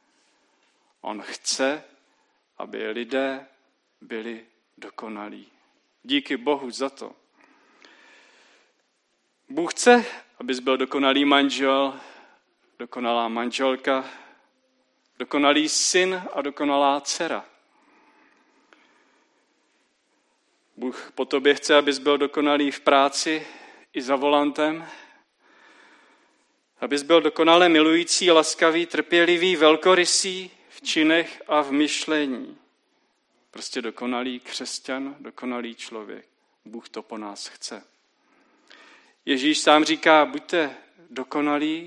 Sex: male